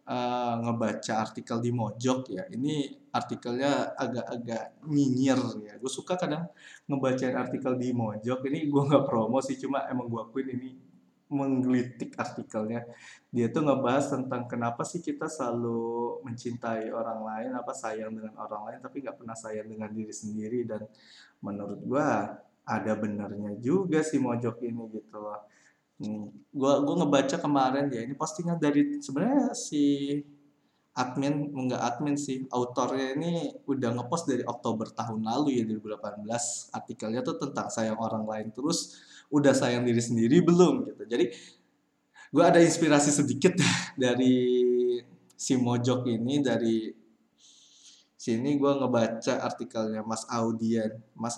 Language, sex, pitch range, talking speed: Indonesian, male, 115-140 Hz, 140 wpm